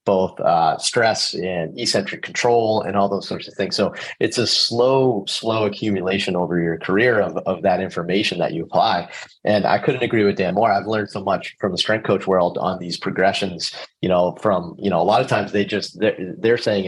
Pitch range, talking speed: 95-115 Hz, 215 wpm